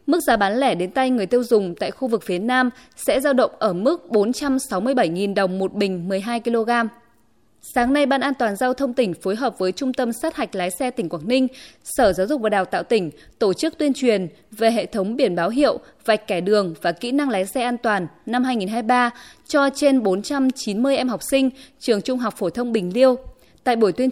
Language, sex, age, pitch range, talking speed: Vietnamese, female, 20-39, 205-270 Hz, 220 wpm